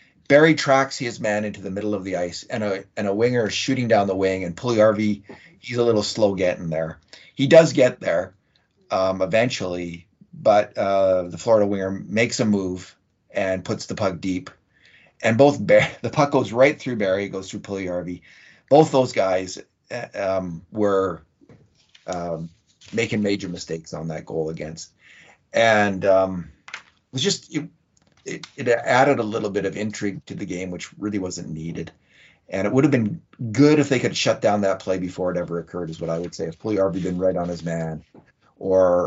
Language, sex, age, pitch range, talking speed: English, male, 40-59, 90-110 Hz, 190 wpm